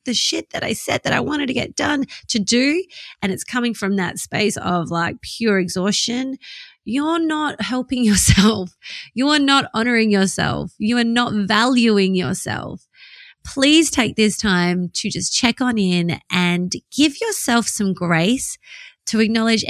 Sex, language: female, English